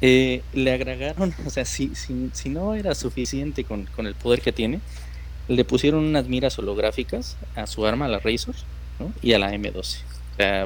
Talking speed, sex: 195 wpm, male